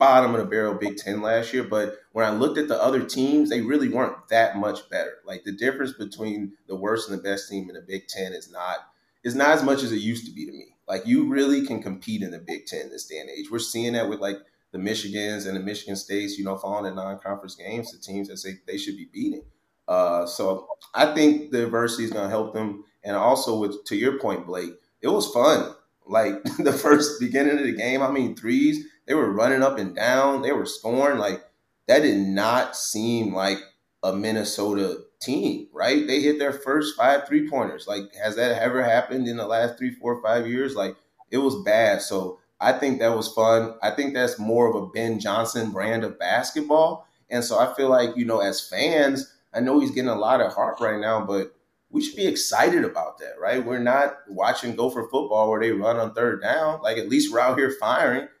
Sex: male